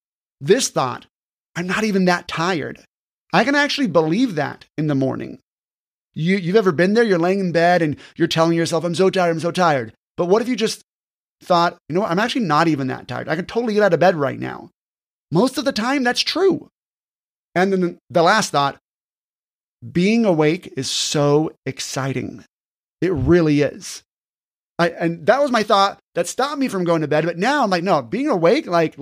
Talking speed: 200 wpm